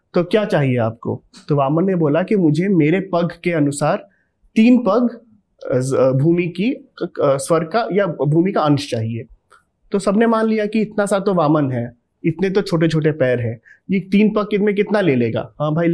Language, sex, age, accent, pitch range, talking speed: Hindi, male, 30-49, native, 130-175 Hz, 190 wpm